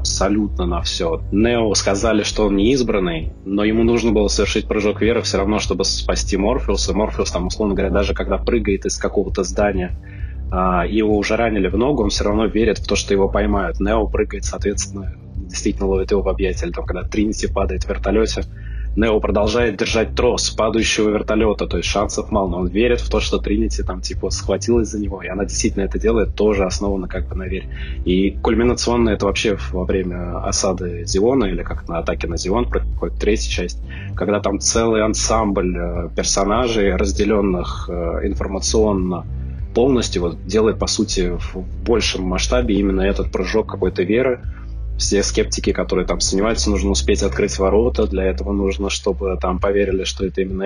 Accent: native